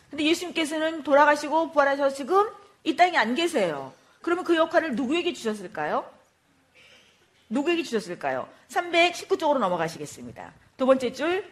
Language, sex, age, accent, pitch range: Korean, female, 40-59, native, 225-320 Hz